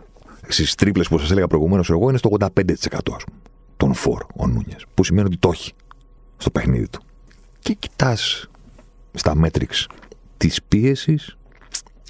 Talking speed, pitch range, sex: 140 wpm, 85-110 Hz, male